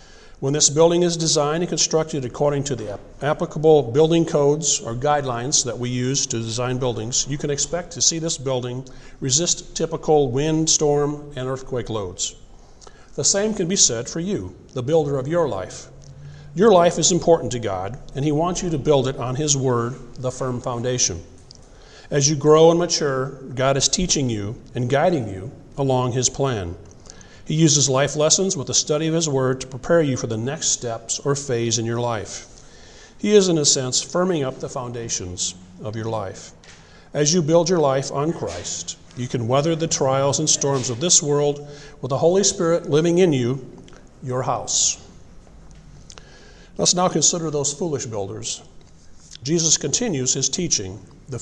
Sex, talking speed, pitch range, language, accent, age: male, 175 wpm, 125-160 Hz, English, American, 50-69